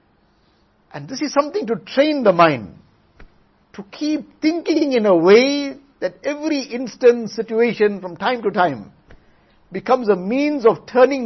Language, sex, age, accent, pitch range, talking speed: English, male, 60-79, Indian, 170-240 Hz, 145 wpm